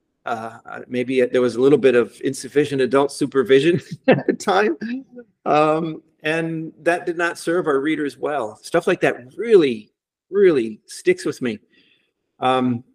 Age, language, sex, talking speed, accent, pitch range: 40-59, English, male, 150 wpm, American, 130-175 Hz